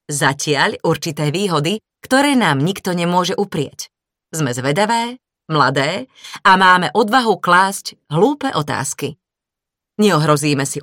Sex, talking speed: female, 105 wpm